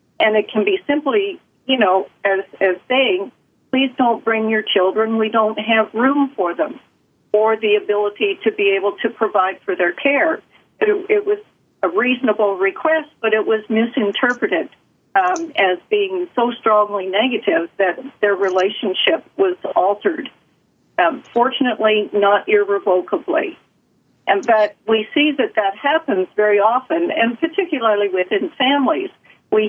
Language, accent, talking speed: English, American, 145 wpm